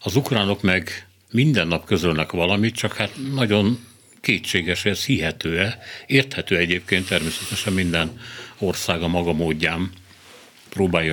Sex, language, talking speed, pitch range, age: male, Hungarian, 120 wpm, 85-110 Hz, 60-79